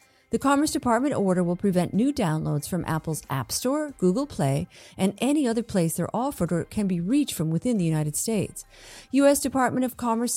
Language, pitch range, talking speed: English, 170-250 Hz, 190 wpm